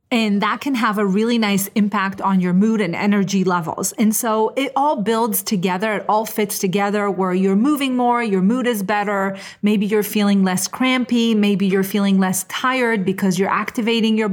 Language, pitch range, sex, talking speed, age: English, 195-230 Hz, female, 195 wpm, 30-49